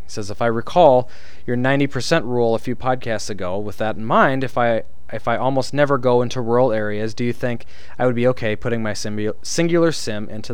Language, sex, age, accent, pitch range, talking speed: English, male, 20-39, American, 105-135 Hz, 215 wpm